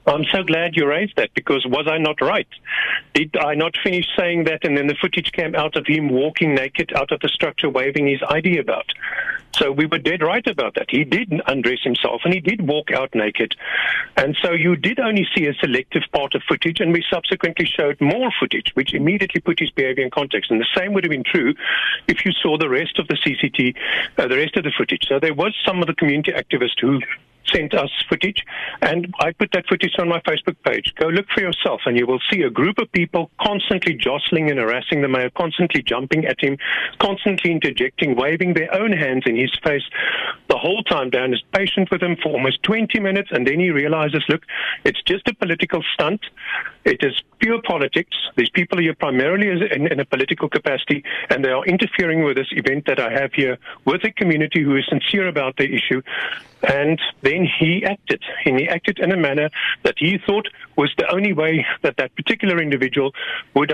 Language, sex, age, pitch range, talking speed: English, male, 50-69, 145-195 Hz, 215 wpm